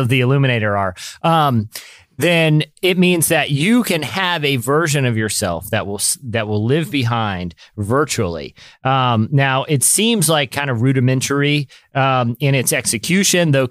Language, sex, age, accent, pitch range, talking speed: English, male, 30-49, American, 115-145 Hz, 155 wpm